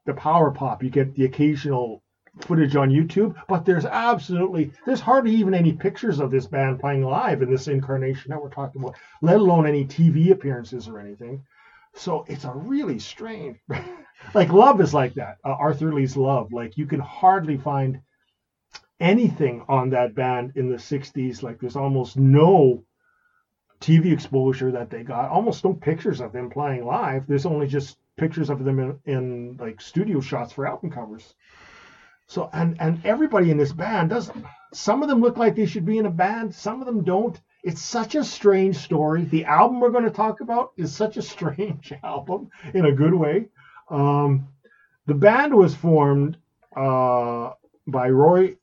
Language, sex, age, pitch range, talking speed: English, male, 40-59, 130-185 Hz, 180 wpm